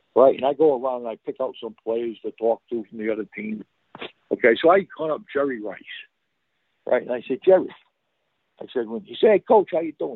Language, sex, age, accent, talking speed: English, male, 60-79, American, 240 wpm